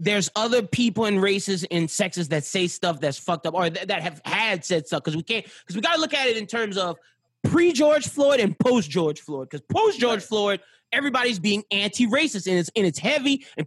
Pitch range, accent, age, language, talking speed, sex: 205-285 Hz, American, 20-39, English, 220 wpm, male